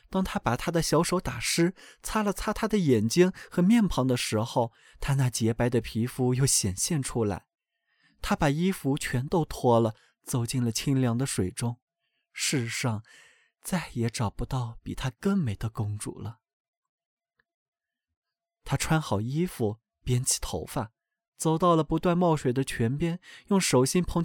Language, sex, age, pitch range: Chinese, male, 20-39, 115-175 Hz